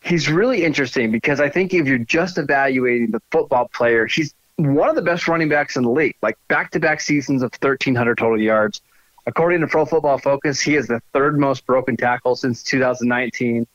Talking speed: 190 wpm